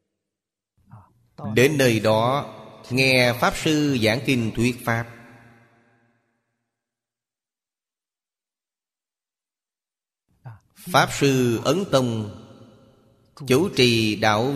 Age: 30-49